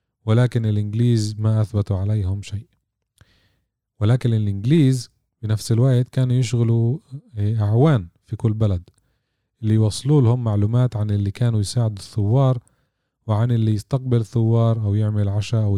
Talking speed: 120 wpm